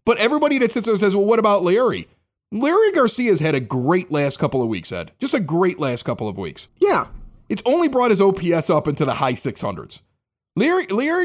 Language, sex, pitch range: English, male, 145-220 Hz